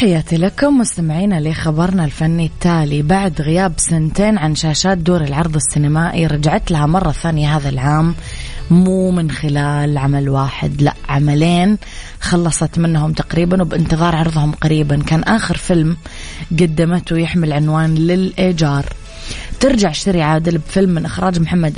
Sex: female